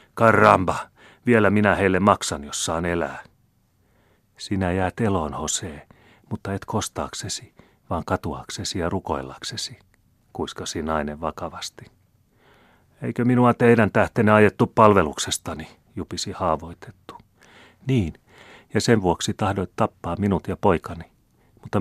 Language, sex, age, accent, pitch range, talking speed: Finnish, male, 40-59, native, 80-105 Hz, 105 wpm